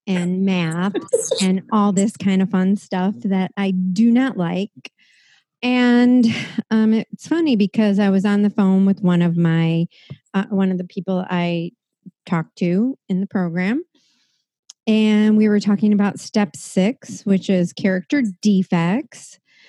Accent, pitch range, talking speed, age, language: American, 185-230 Hz, 150 wpm, 40-59, English